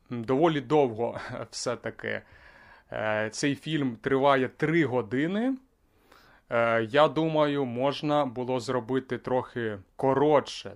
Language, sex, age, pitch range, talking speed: Ukrainian, male, 30-49, 110-150 Hz, 85 wpm